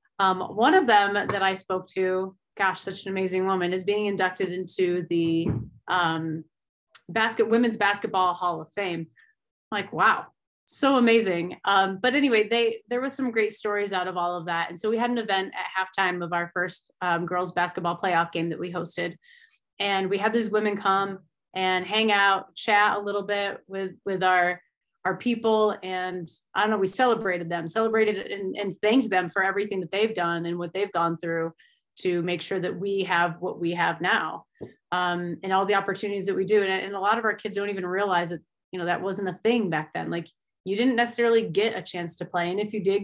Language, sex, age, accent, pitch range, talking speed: English, female, 30-49, American, 175-215 Hz, 215 wpm